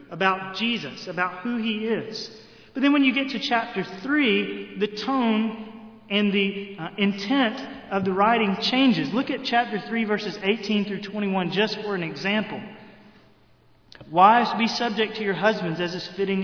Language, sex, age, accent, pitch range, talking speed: English, male, 30-49, American, 190-230 Hz, 160 wpm